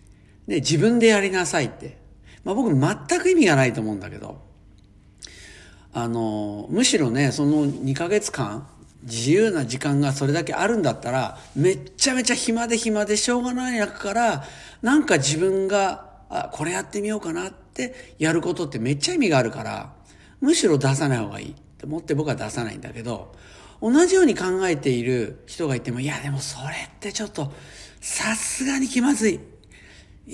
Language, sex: Japanese, male